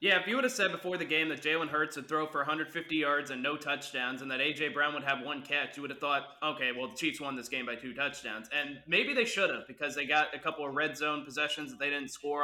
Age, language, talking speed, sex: 20-39, English, 290 wpm, male